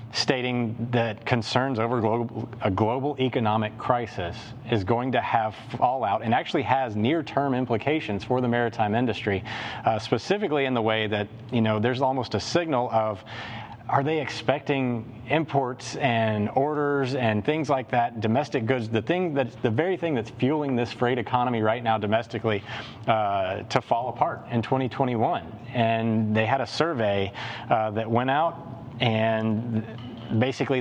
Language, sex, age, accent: English, male, 30-49, American